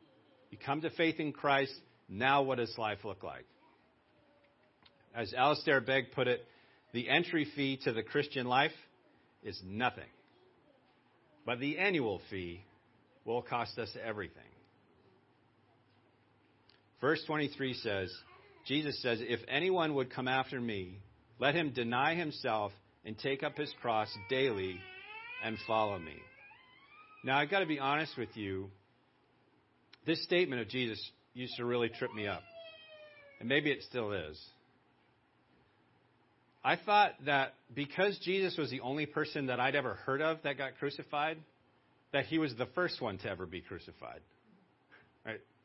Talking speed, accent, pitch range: 145 wpm, American, 115-150 Hz